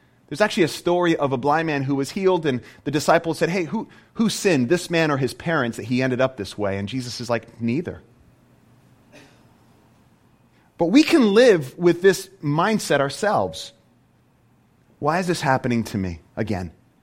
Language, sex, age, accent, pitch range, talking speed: English, male, 30-49, American, 115-165 Hz, 175 wpm